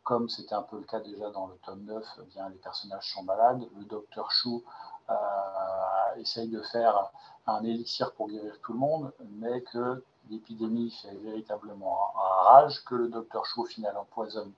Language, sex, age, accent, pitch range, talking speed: French, male, 40-59, French, 110-125 Hz, 190 wpm